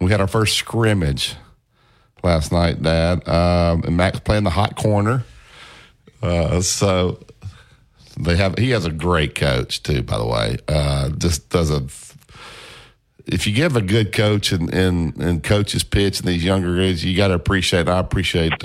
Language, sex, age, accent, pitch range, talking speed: English, male, 50-69, American, 85-105 Hz, 170 wpm